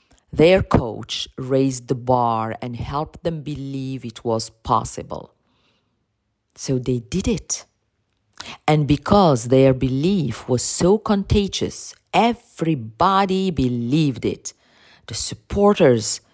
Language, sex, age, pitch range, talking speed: English, female, 50-69, 115-150 Hz, 105 wpm